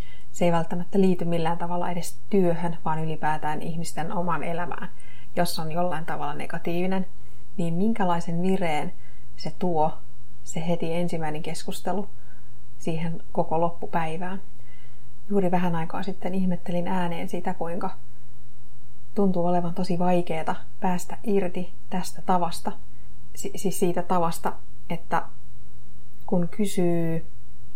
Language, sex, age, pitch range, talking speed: Finnish, female, 30-49, 150-180 Hz, 115 wpm